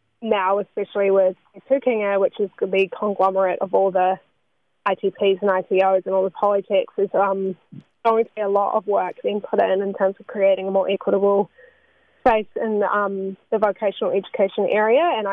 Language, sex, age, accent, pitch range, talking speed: English, female, 10-29, Australian, 195-220 Hz, 175 wpm